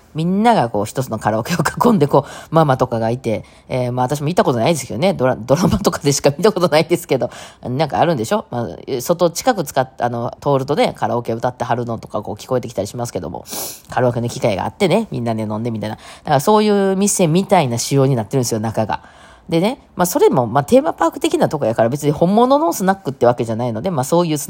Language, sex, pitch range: Japanese, female, 120-190 Hz